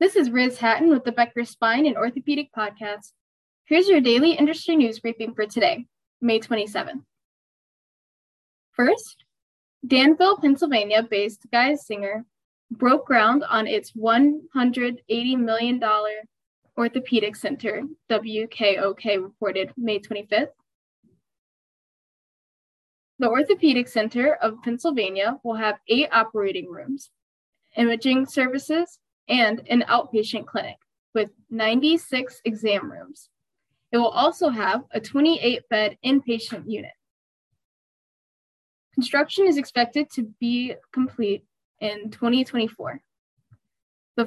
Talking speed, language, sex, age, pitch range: 100 wpm, English, female, 10-29, 220-290 Hz